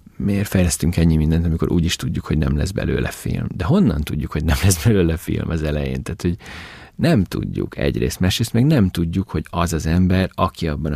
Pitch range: 75-95 Hz